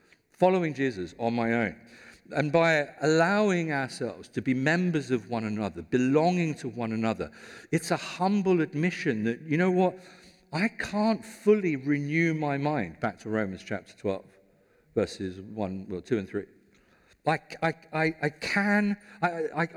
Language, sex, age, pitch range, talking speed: English, male, 50-69, 120-190 Hz, 150 wpm